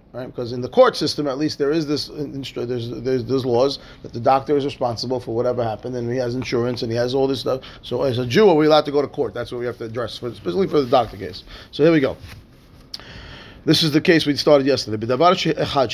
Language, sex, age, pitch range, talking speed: English, male, 30-49, 135-170 Hz, 260 wpm